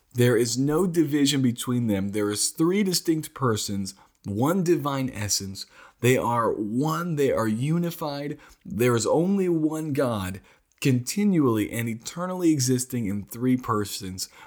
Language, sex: English, male